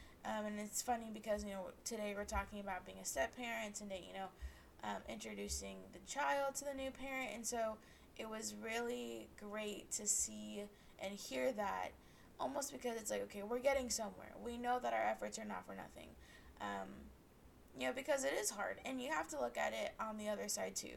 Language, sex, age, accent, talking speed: English, female, 20-39, American, 210 wpm